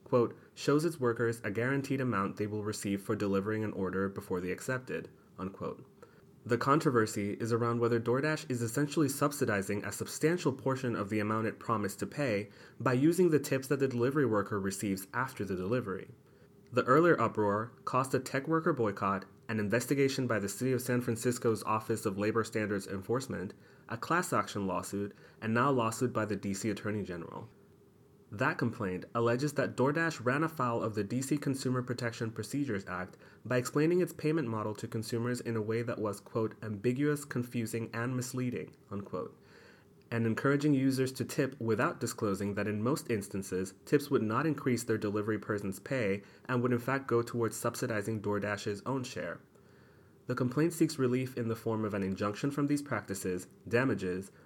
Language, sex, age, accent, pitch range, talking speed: English, male, 30-49, American, 105-130 Hz, 175 wpm